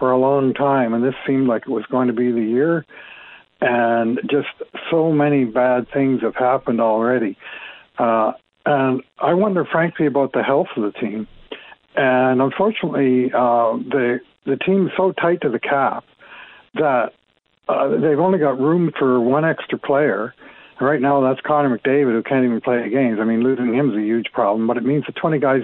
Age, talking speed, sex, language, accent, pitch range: 60-79, 185 wpm, male, English, American, 125-155 Hz